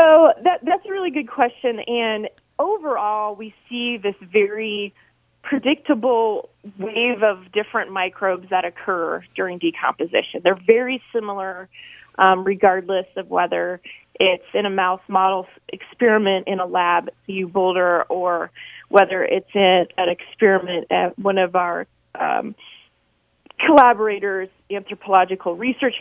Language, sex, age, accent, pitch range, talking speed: English, female, 30-49, American, 185-235 Hz, 125 wpm